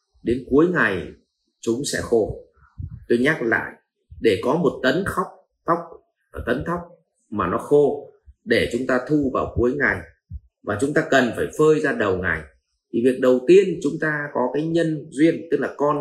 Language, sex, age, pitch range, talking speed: Vietnamese, male, 30-49, 120-200 Hz, 185 wpm